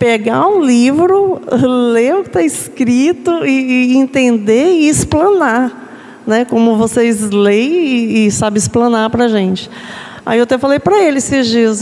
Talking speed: 160 wpm